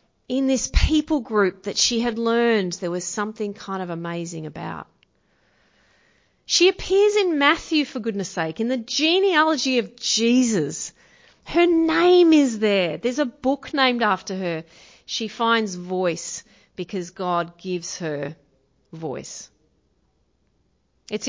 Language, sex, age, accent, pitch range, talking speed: English, female, 30-49, Australian, 175-230 Hz, 130 wpm